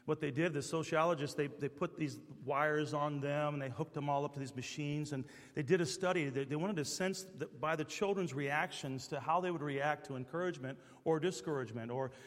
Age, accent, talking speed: 40-59, American, 220 wpm